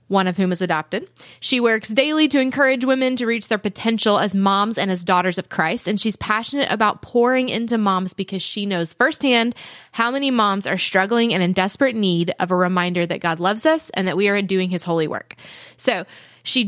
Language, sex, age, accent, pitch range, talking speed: English, female, 20-39, American, 185-235 Hz, 210 wpm